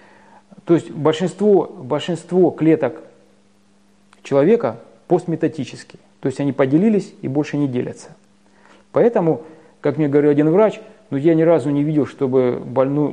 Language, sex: Russian, male